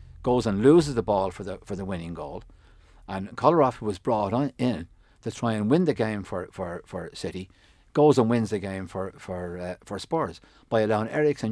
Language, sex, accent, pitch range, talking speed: English, male, Irish, 90-110 Hz, 215 wpm